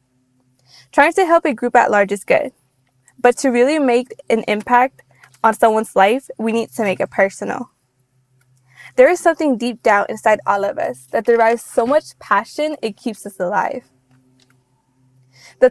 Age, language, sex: 20-39, English, female